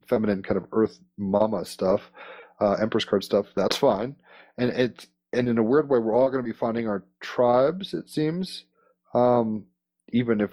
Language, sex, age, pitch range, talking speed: English, male, 30-49, 95-115 Hz, 180 wpm